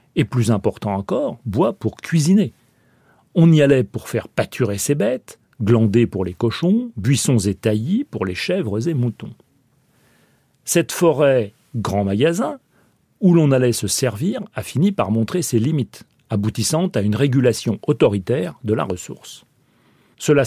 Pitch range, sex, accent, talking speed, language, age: 110-150 Hz, male, French, 150 wpm, French, 40-59